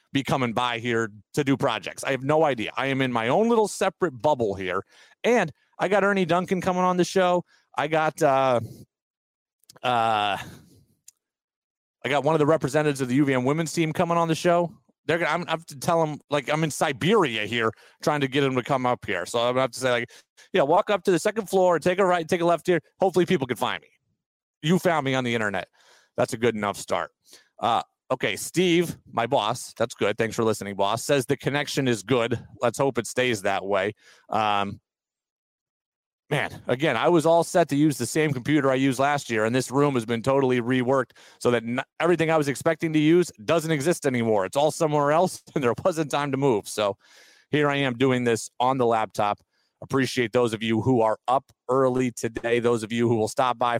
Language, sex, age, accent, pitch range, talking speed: English, male, 30-49, American, 120-160 Hz, 215 wpm